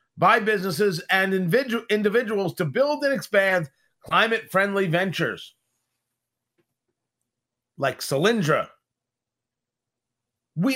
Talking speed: 80 wpm